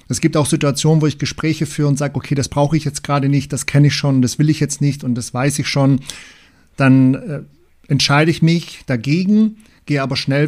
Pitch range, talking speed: 125-150 Hz, 225 wpm